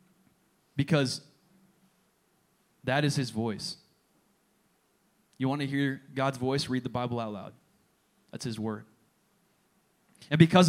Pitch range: 125-165 Hz